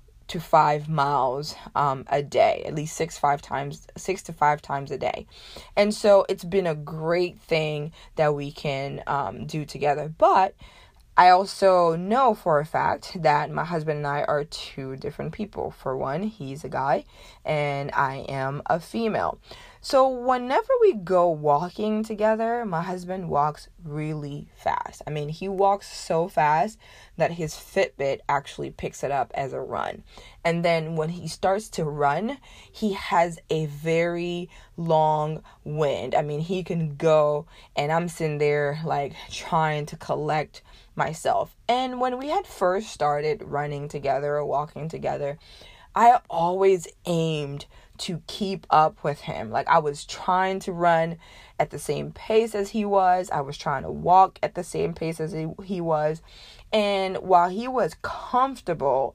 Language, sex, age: English, female, 20-39